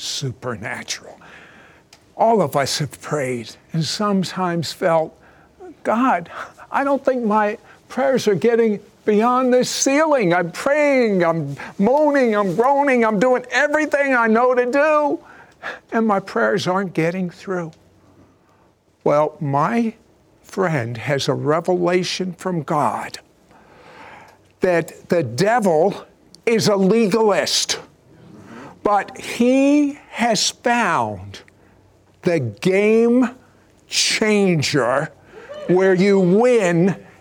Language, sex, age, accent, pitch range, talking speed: English, male, 60-79, American, 150-230 Hz, 100 wpm